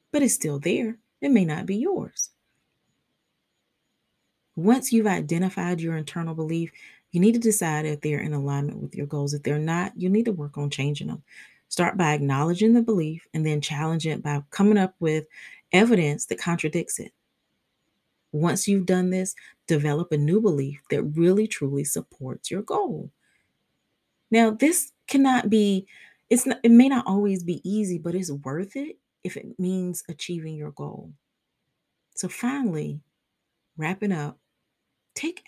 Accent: American